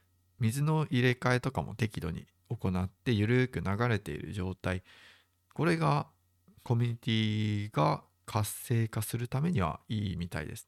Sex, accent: male, native